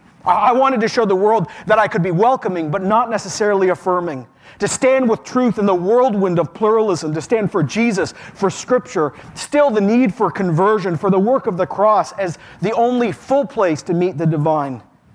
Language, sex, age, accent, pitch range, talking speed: English, male, 40-59, American, 160-210 Hz, 200 wpm